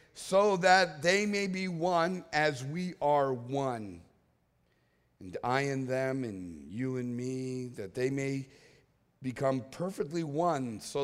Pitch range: 130-180 Hz